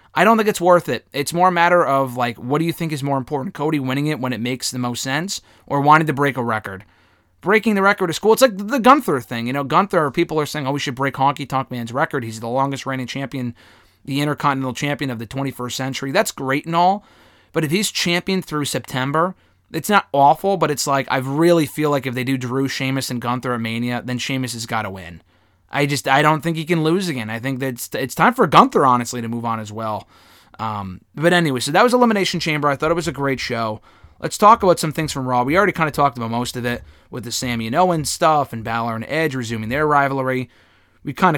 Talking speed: 250 wpm